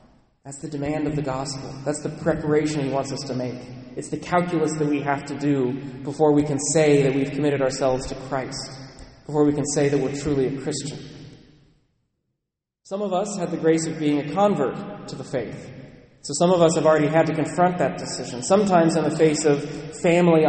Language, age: English, 30-49